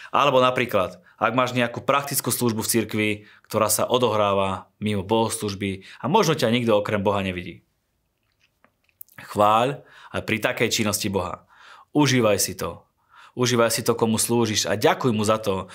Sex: male